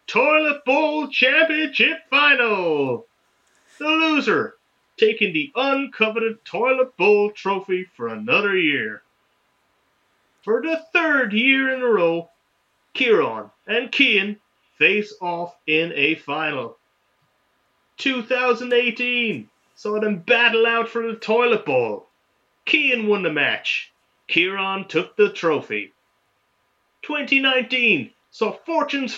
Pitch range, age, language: 190-275 Hz, 30-49, English